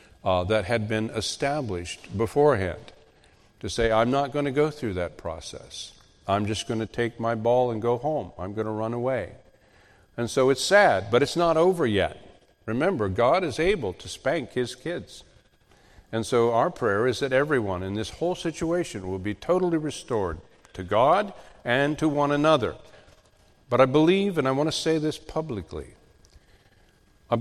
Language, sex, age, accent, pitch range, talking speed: English, male, 50-69, American, 95-130 Hz, 175 wpm